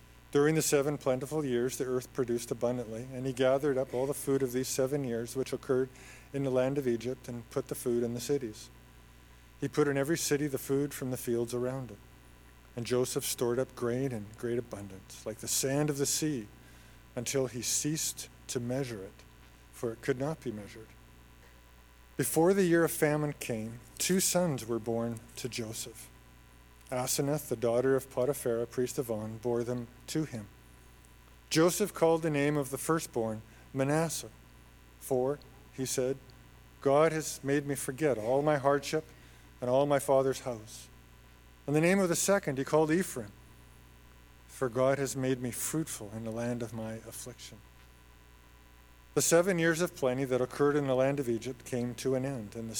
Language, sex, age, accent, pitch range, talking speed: English, male, 40-59, American, 100-140 Hz, 180 wpm